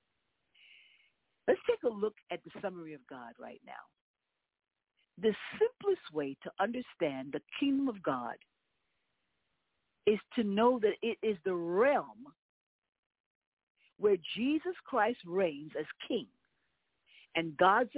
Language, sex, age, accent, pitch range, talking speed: English, female, 50-69, American, 185-270 Hz, 120 wpm